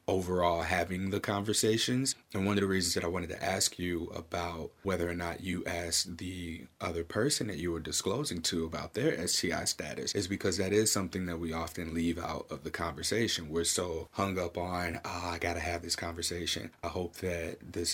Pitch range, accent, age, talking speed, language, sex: 85-95 Hz, American, 30-49, 205 wpm, English, male